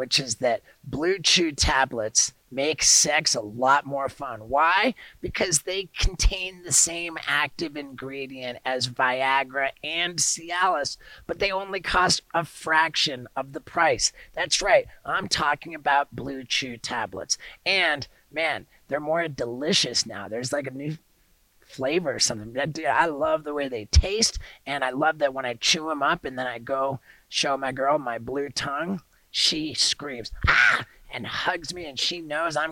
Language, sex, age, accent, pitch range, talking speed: English, male, 30-49, American, 130-170 Hz, 165 wpm